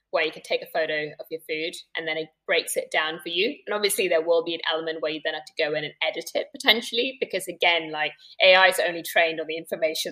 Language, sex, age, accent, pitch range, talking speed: English, female, 10-29, British, 160-250 Hz, 265 wpm